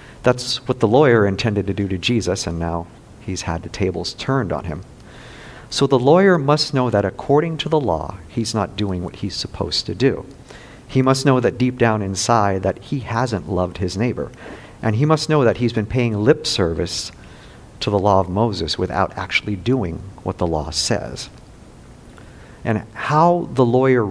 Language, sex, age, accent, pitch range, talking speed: English, male, 50-69, American, 95-120 Hz, 185 wpm